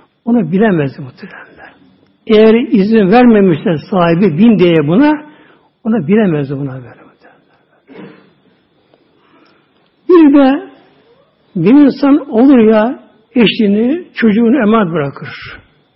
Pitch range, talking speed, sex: 185-250 Hz, 90 wpm, male